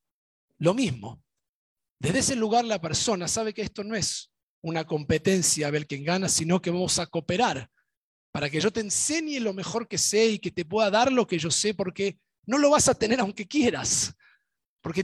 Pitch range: 145-210 Hz